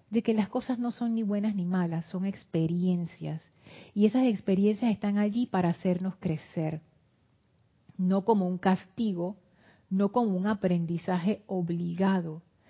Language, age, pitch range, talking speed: Spanish, 40-59, 175-215 Hz, 135 wpm